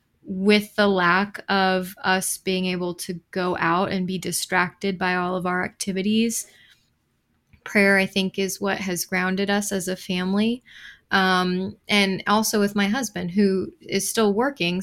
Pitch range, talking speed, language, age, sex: 175-200 Hz, 160 wpm, English, 20-39, female